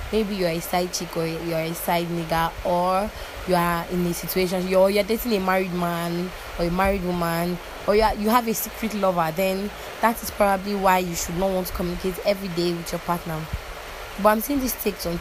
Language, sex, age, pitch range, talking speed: English, female, 20-39, 175-210 Hz, 220 wpm